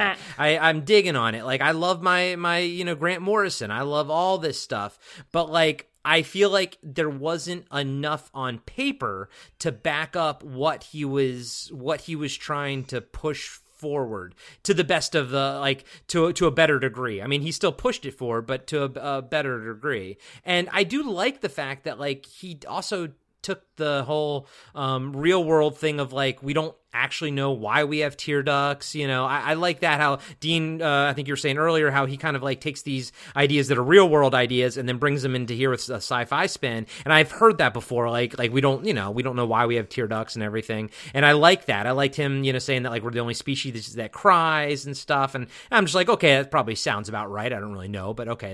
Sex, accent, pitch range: male, American, 130-165 Hz